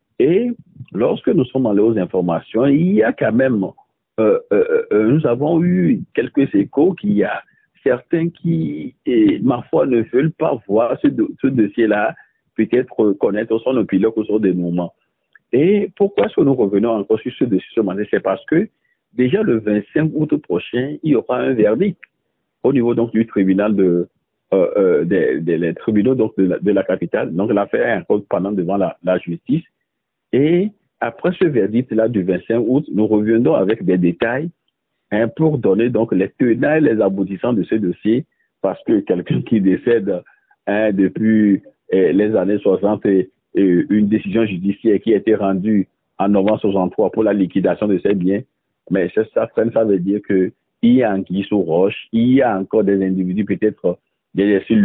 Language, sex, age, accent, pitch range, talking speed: French, male, 60-79, French, 95-135 Hz, 185 wpm